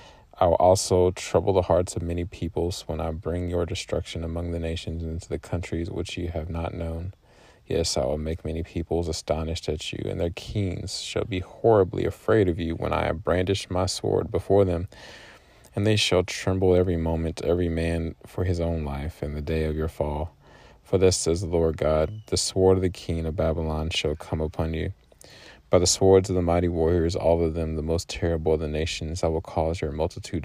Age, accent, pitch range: 20-39, American, 80-90 Hz